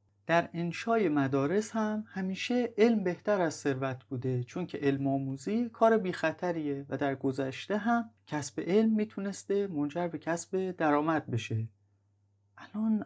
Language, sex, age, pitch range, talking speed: Persian, male, 30-49, 125-185 Hz, 140 wpm